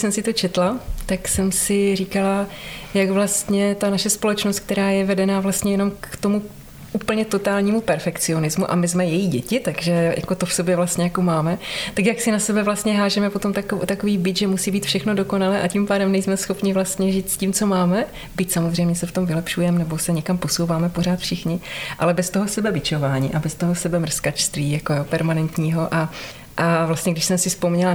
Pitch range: 170-200 Hz